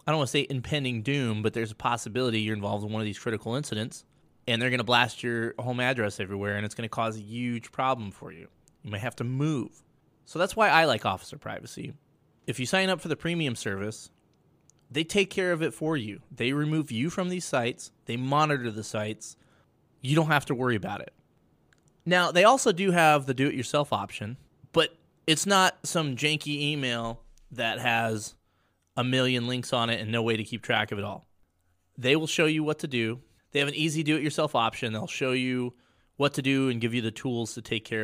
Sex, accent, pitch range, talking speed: male, American, 105-140 Hz, 220 wpm